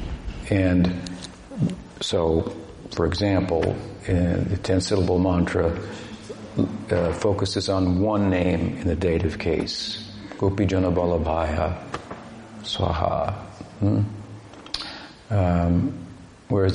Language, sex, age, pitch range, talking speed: English, male, 50-69, 90-105 Hz, 80 wpm